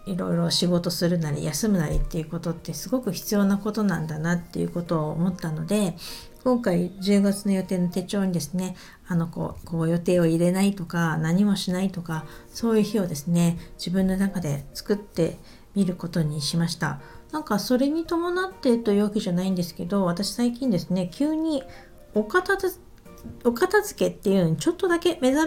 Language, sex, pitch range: Japanese, female, 170-230 Hz